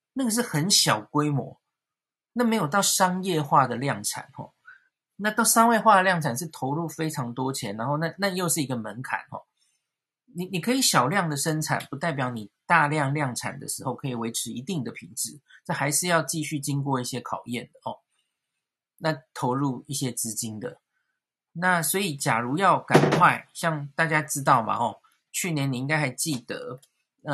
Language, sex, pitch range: Chinese, male, 135-175 Hz